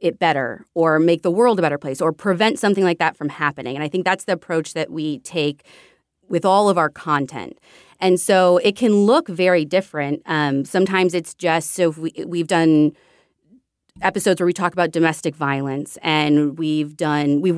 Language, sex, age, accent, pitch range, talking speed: English, female, 30-49, American, 155-195 Hz, 190 wpm